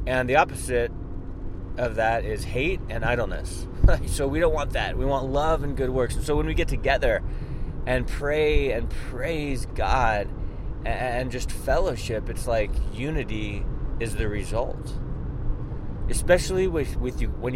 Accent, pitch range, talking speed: American, 95-125 Hz, 155 wpm